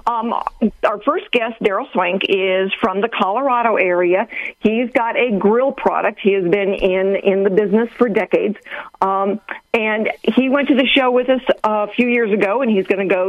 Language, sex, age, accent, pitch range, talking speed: English, female, 50-69, American, 190-245 Hz, 195 wpm